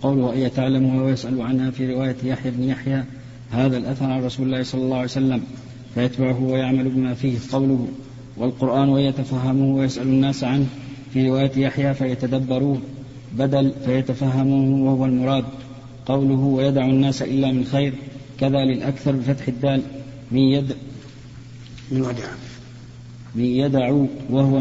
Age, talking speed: 40-59, 135 wpm